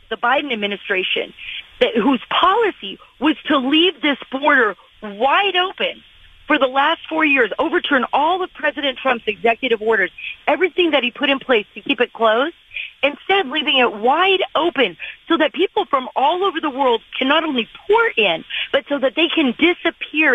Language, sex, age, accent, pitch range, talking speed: English, female, 40-59, American, 200-280 Hz, 170 wpm